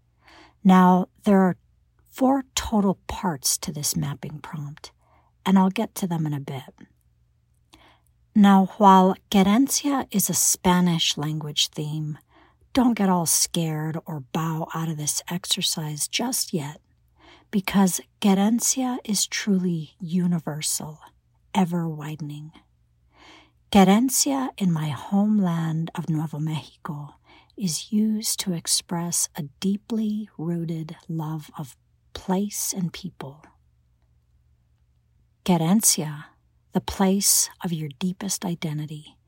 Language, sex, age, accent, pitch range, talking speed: English, female, 60-79, American, 150-195 Hz, 110 wpm